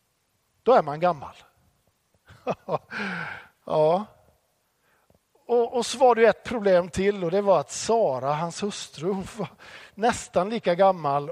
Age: 50-69